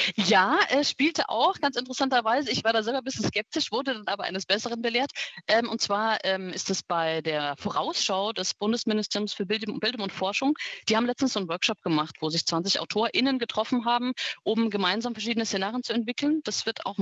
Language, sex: German, female